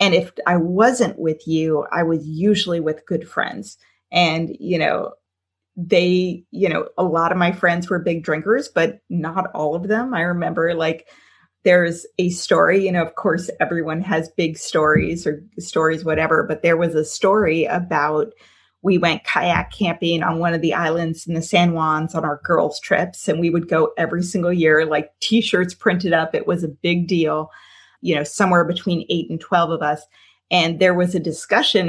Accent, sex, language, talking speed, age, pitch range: American, female, English, 190 wpm, 30-49, 160-180 Hz